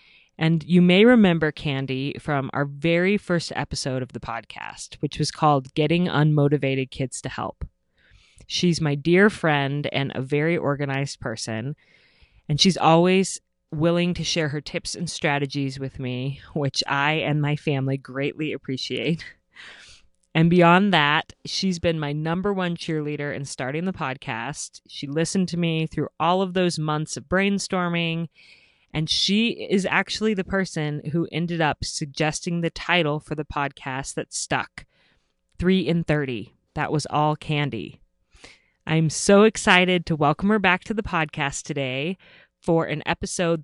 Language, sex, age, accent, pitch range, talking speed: English, female, 30-49, American, 140-175 Hz, 155 wpm